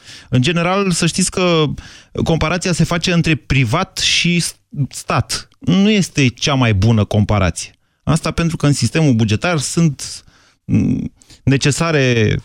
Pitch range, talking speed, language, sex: 110-165 Hz, 125 wpm, Romanian, male